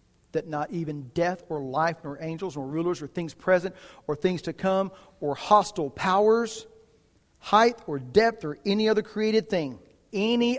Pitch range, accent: 130-195 Hz, American